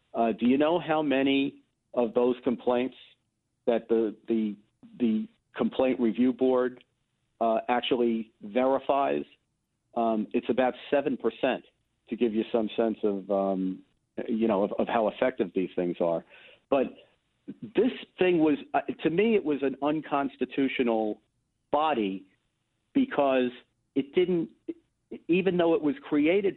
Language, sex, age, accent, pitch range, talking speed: English, male, 50-69, American, 120-145 Hz, 135 wpm